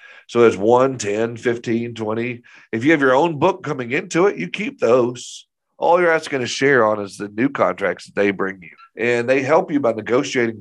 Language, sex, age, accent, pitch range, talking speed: English, male, 40-59, American, 105-130 Hz, 215 wpm